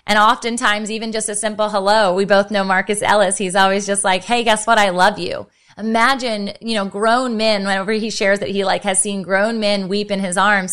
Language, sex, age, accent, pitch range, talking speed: English, female, 20-39, American, 205-260 Hz, 230 wpm